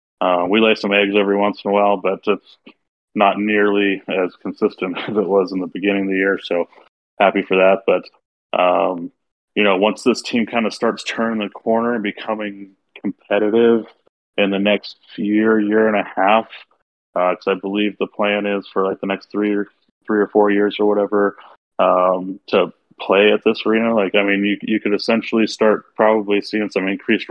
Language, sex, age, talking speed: English, male, 20-39, 200 wpm